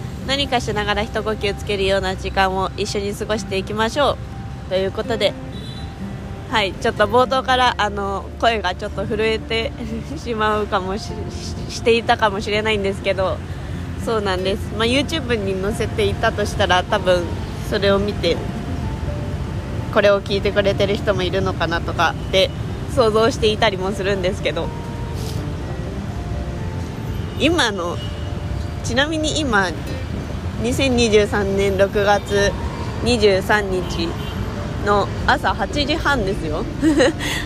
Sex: female